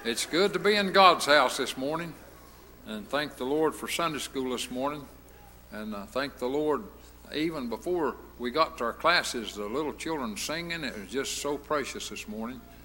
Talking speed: 190 wpm